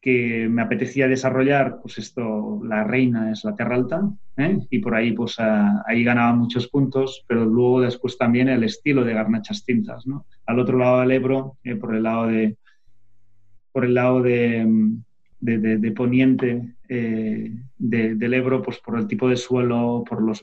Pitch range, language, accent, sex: 115-130 Hz, English, Spanish, male